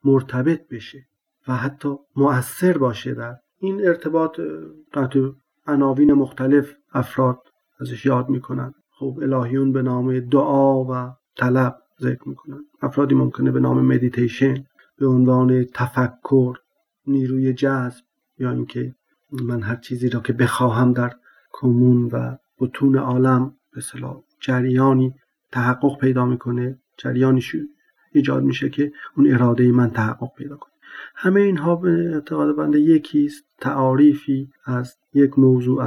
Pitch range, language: 125-145 Hz, Persian